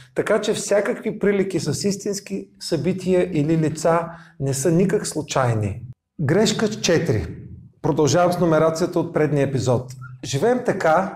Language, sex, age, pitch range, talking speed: Bulgarian, male, 40-59, 140-185 Hz, 125 wpm